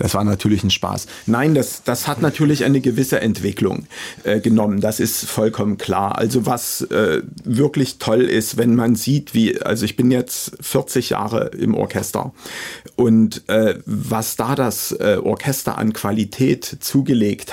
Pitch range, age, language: 110-120 Hz, 40-59, German